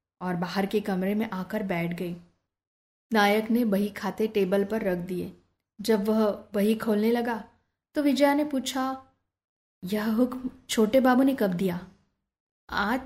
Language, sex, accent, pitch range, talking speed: Hindi, female, native, 195-240 Hz, 150 wpm